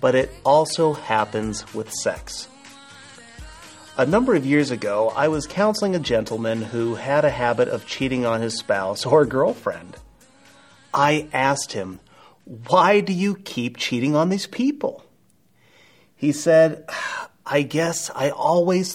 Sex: male